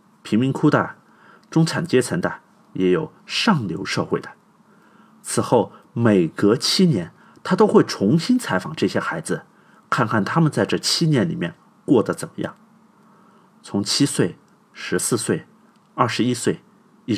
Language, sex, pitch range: Chinese, male, 135-220 Hz